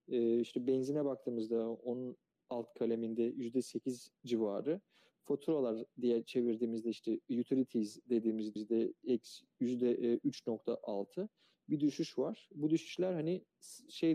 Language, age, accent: Turkish, 40-59, native